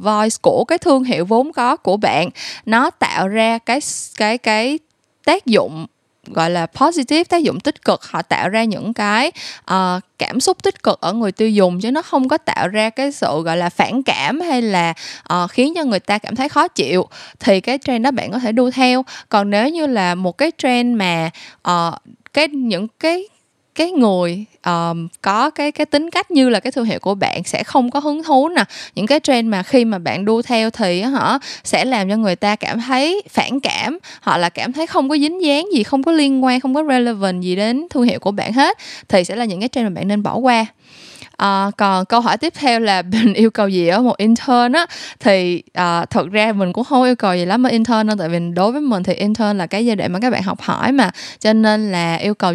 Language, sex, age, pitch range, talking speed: Vietnamese, female, 10-29, 195-270 Hz, 235 wpm